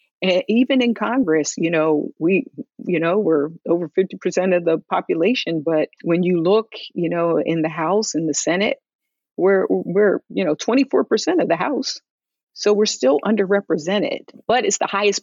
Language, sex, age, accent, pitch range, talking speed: English, female, 40-59, American, 160-200 Hz, 180 wpm